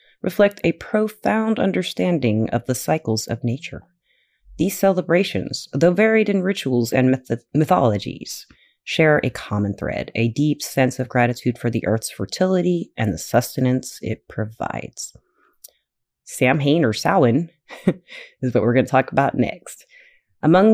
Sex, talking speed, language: female, 135 wpm, English